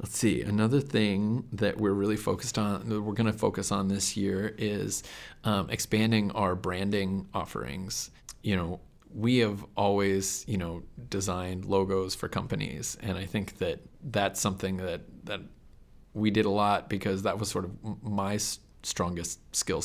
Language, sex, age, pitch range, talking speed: English, male, 30-49, 95-105 Hz, 165 wpm